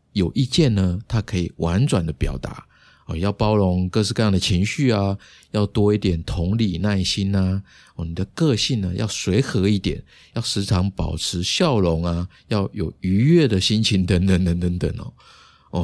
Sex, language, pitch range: male, Chinese, 85-115 Hz